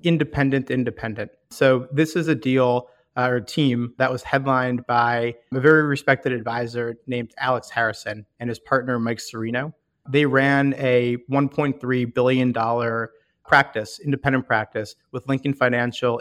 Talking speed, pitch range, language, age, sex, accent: 135 wpm, 120-135 Hz, English, 30-49, male, American